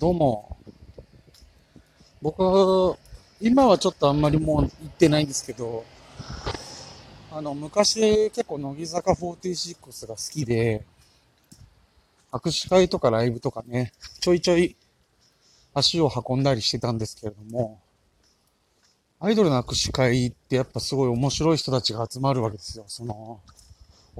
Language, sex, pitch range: Japanese, male, 115-160 Hz